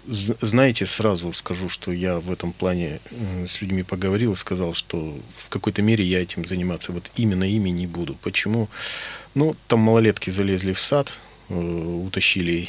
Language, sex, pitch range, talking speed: Russian, male, 90-110 Hz, 150 wpm